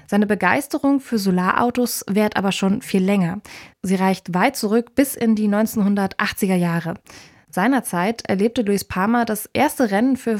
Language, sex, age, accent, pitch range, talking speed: German, female, 20-39, German, 185-235 Hz, 150 wpm